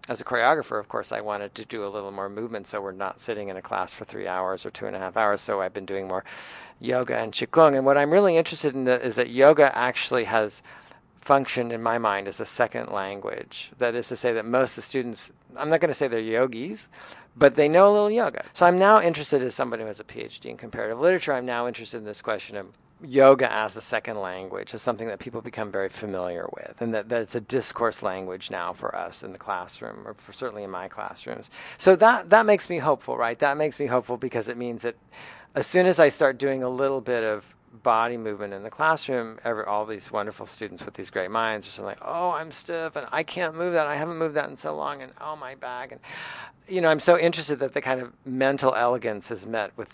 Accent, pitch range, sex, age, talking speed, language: American, 110-150 Hz, male, 50-69, 240 wpm, English